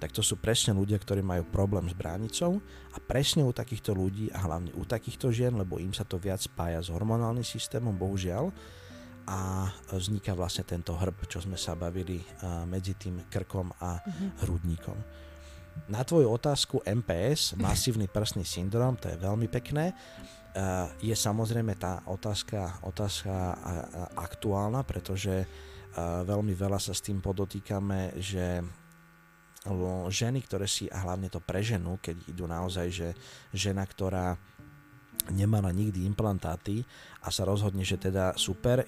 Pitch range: 90-110 Hz